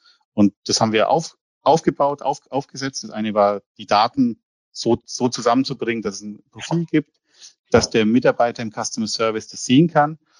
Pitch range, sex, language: 110-130 Hz, male, German